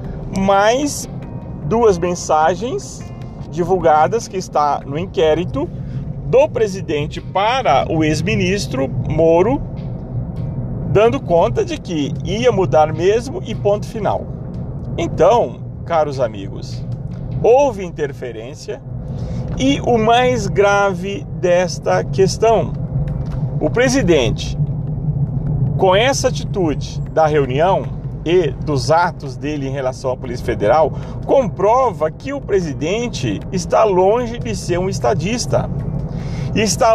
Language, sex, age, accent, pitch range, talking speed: Portuguese, male, 40-59, Brazilian, 140-190 Hz, 100 wpm